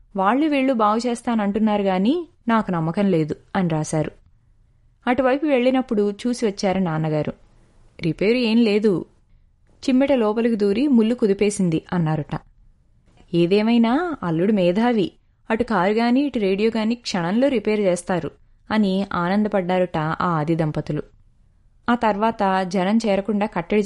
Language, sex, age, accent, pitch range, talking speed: Telugu, female, 20-39, native, 175-225 Hz, 110 wpm